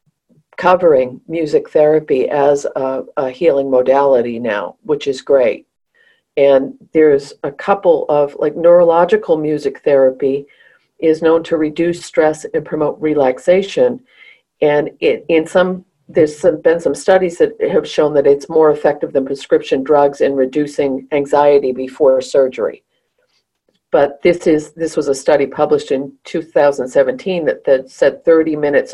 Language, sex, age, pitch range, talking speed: English, female, 50-69, 140-195 Hz, 140 wpm